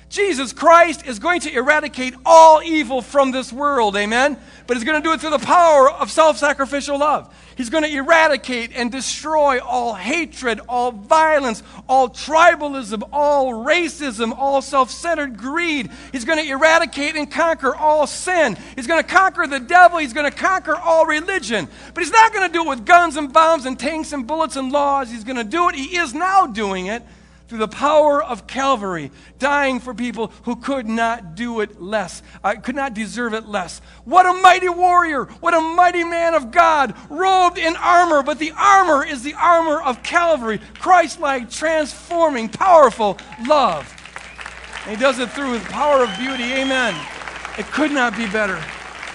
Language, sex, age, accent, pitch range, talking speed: English, male, 50-69, American, 245-325 Hz, 180 wpm